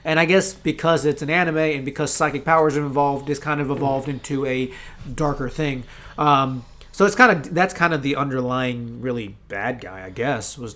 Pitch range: 135-160 Hz